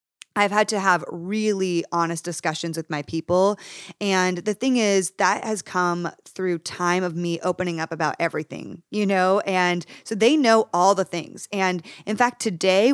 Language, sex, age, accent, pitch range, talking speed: English, female, 20-39, American, 170-210 Hz, 175 wpm